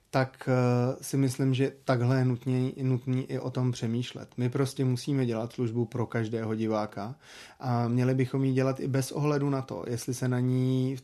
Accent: native